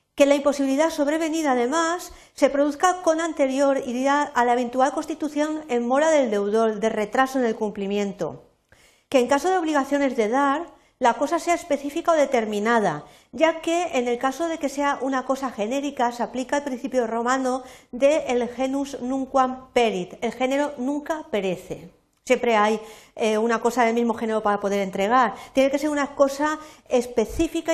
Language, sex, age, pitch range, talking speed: Spanish, female, 50-69, 220-285 Hz, 165 wpm